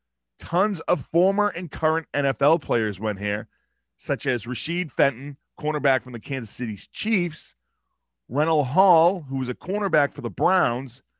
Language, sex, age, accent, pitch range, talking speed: English, male, 30-49, American, 120-175 Hz, 150 wpm